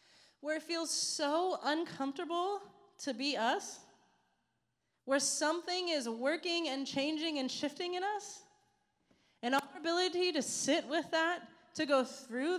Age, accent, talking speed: 20-39, American, 135 wpm